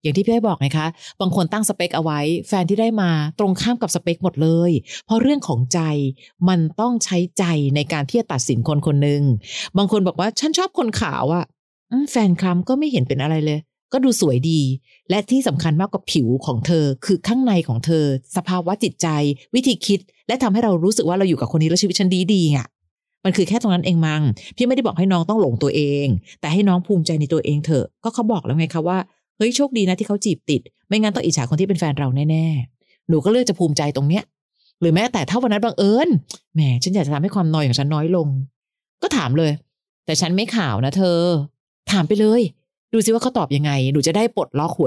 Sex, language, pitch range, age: female, Thai, 150-200 Hz, 30-49